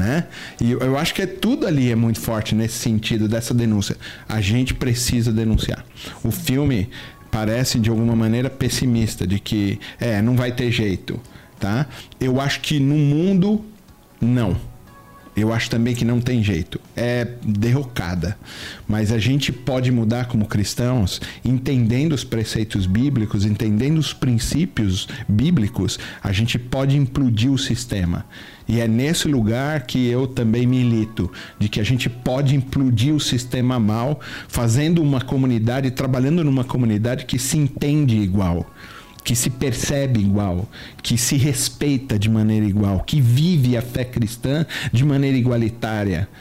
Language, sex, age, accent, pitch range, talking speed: Portuguese, male, 40-59, Brazilian, 110-130 Hz, 145 wpm